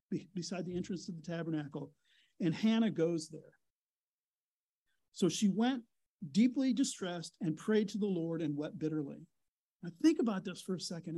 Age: 50-69